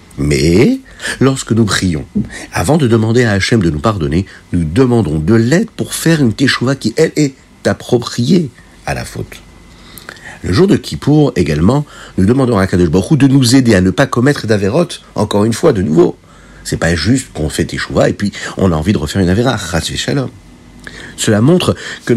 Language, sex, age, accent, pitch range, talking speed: French, male, 50-69, French, 90-130 Hz, 185 wpm